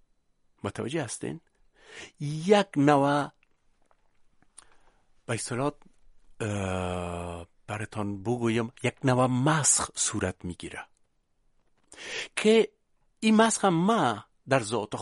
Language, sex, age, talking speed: Persian, male, 60-79, 80 wpm